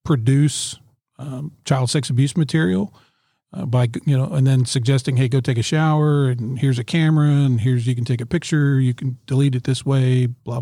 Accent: American